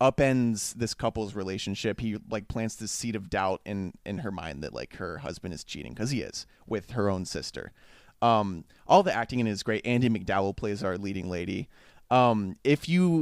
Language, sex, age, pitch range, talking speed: English, male, 30-49, 110-140 Hz, 200 wpm